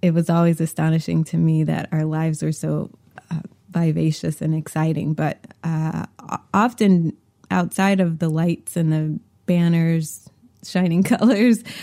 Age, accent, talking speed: 20-39, American, 135 wpm